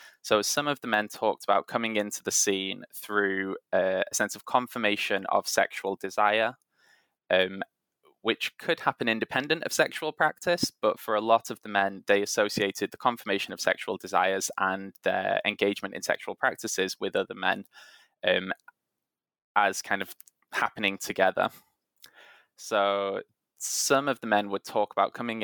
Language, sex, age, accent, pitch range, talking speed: English, male, 20-39, British, 100-120 Hz, 155 wpm